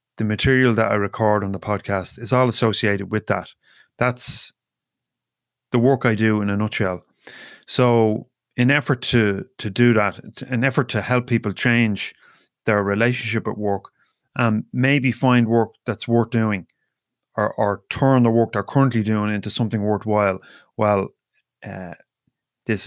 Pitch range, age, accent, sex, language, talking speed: 105-120 Hz, 30-49, Irish, male, English, 155 wpm